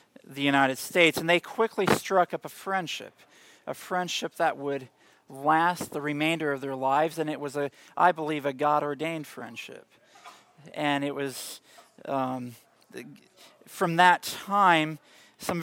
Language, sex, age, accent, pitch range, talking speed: English, male, 40-59, American, 140-175 Hz, 140 wpm